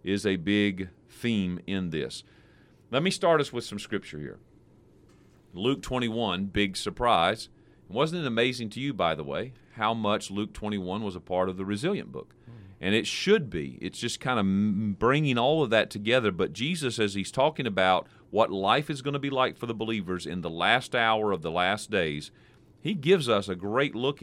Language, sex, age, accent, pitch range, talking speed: English, male, 40-59, American, 95-125 Hz, 200 wpm